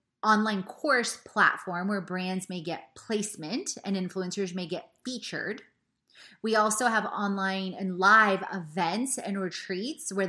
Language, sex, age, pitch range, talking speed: English, female, 20-39, 185-225 Hz, 135 wpm